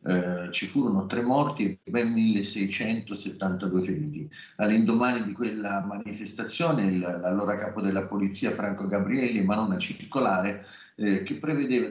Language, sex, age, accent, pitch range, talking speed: Italian, male, 40-59, native, 90-110 Hz, 125 wpm